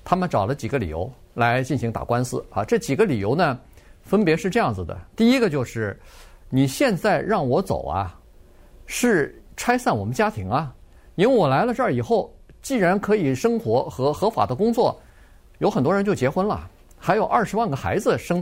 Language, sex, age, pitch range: Chinese, male, 50-69, 115-185 Hz